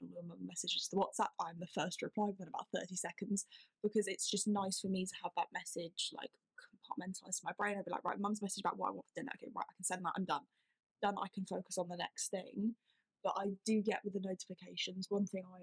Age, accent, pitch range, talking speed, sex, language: 10-29, British, 180-200 Hz, 250 wpm, female, English